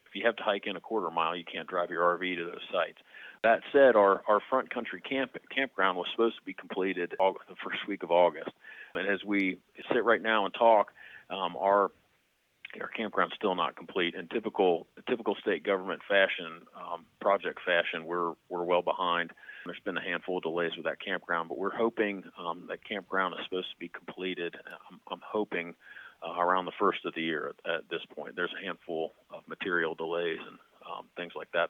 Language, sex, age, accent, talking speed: English, male, 40-59, American, 205 wpm